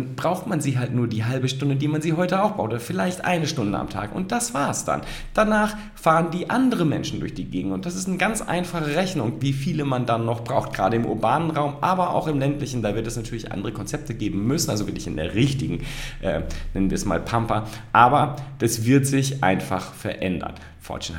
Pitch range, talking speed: 100-145 Hz, 225 wpm